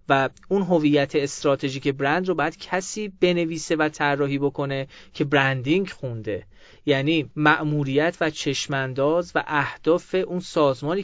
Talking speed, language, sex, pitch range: 125 wpm, Persian, male, 140-180 Hz